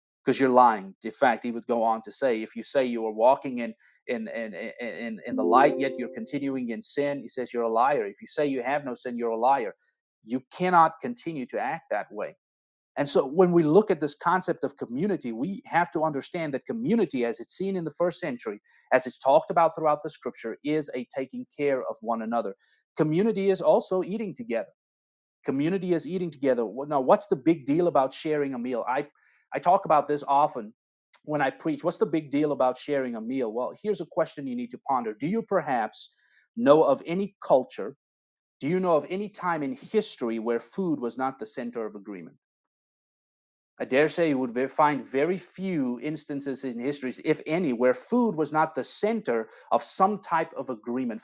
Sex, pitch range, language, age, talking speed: male, 125-175 Hz, English, 30-49, 210 wpm